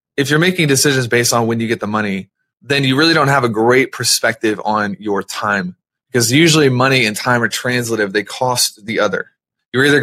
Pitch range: 115-155 Hz